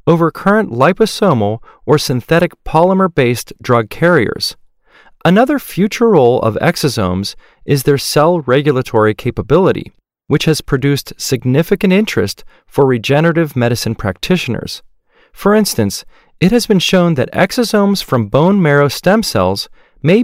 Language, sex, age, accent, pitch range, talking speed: English, male, 40-59, American, 115-180 Hz, 120 wpm